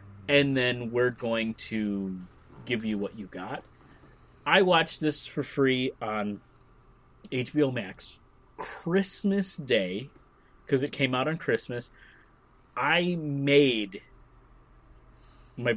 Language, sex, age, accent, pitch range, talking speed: English, male, 30-49, American, 115-155 Hz, 110 wpm